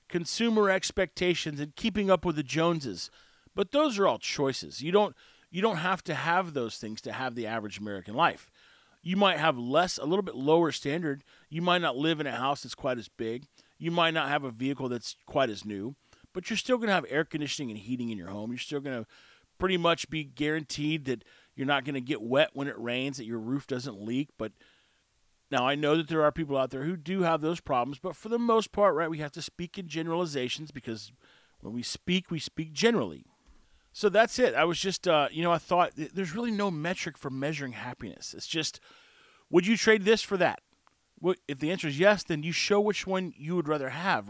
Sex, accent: male, American